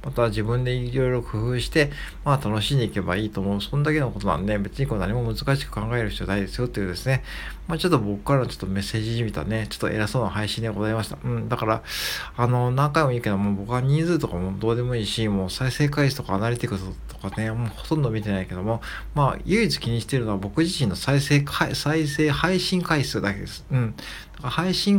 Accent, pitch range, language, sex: native, 100-140 Hz, Japanese, male